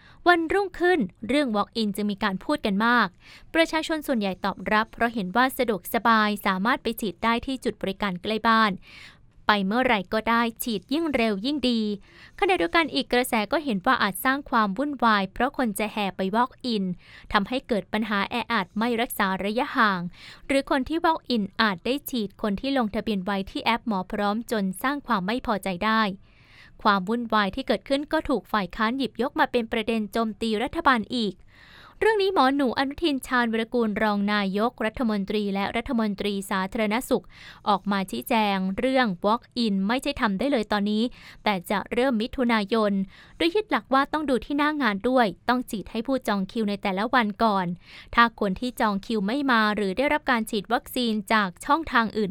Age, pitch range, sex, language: 20-39, 210-255 Hz, female, Thai